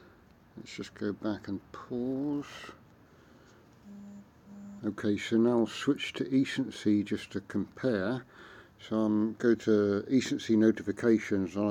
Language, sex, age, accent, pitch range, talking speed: English, male, 50-69, British, 105-115 Hz, 125 wpm